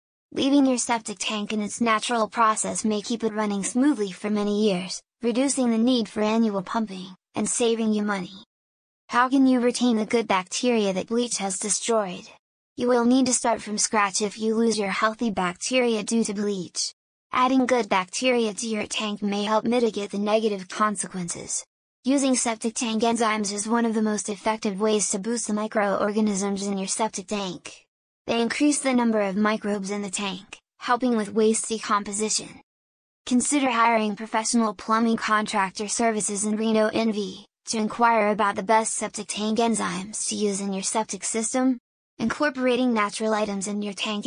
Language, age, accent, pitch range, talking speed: English, 20-39, American, 205-230 Hz, 170 wpm